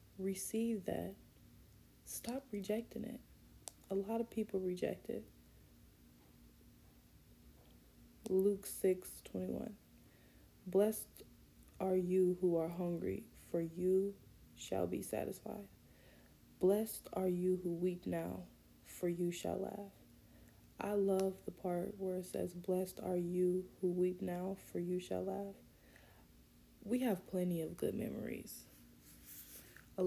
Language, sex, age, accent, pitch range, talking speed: English, female, 20-39, American, 180-210 Hz, 120 wpm